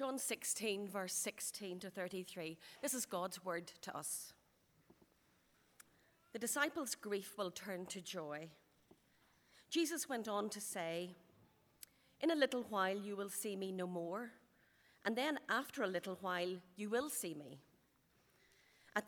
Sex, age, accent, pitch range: female, 40-59, Irish, 185-235 Hz